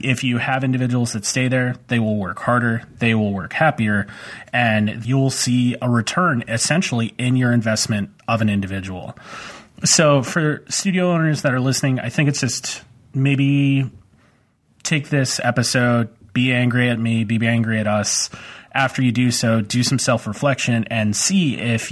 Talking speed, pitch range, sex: 165 wpm, 110-130 Hz, male